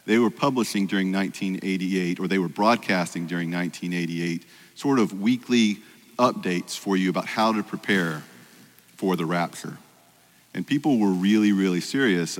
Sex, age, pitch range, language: male, 40-59, 85-100 Hz, English